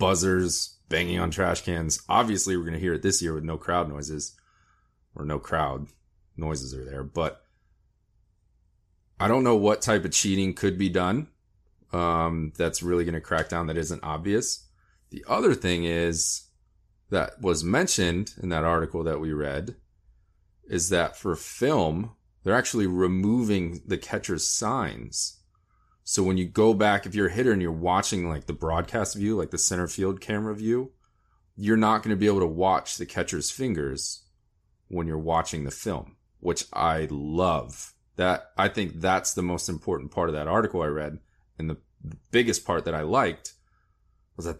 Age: 30-49